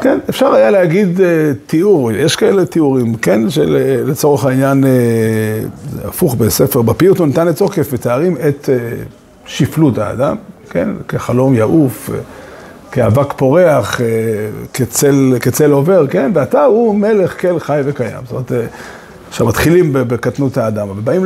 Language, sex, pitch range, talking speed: Hebrew, male, 125-175 Hz, 135 wpm